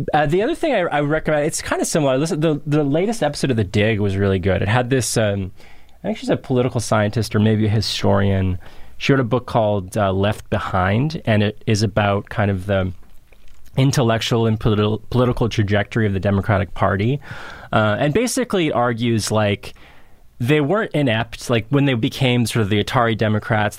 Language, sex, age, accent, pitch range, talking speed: English, male, 20-39, American, 100-130 Hz, 190 wpm